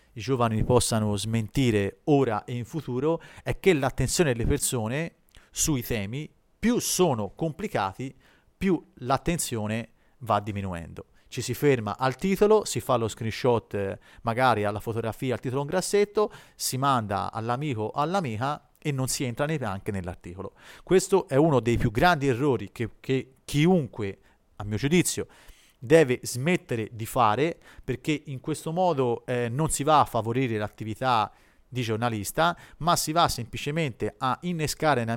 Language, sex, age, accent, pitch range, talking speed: Italian, male, 40-59, native, 110-150 Hz, 145 wpm